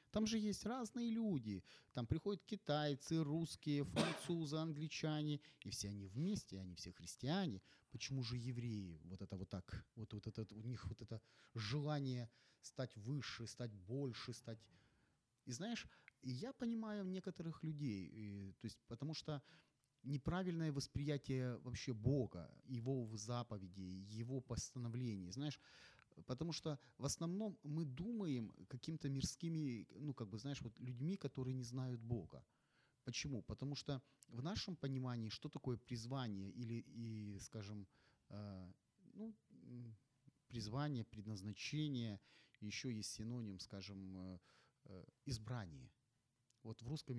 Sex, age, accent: male, 30-49, native